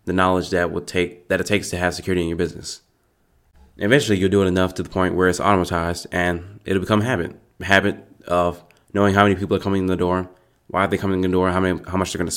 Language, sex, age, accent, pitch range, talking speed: English, male, 20-39, American, 90-100 Hz, 265 wpm